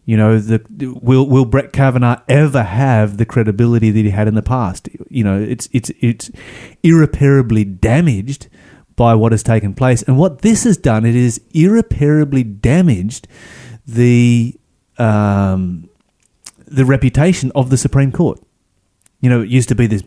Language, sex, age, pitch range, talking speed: English, male, 30-49, 110-135 Hz, 160 wpm